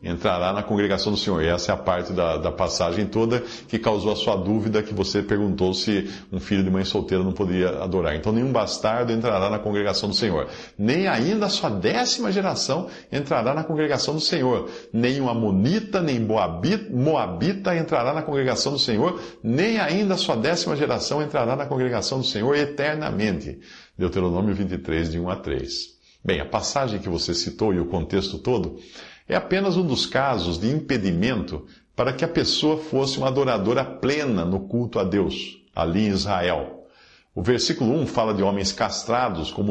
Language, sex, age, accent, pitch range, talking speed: Portuguese, male, 50-69, Brazilian, 95-140 Hz, 180 wpm